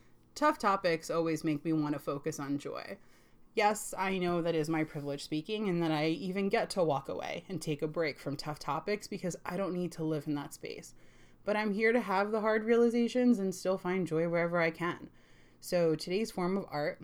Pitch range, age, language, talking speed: 160-220 Hz, 20-39, English, 220 wpm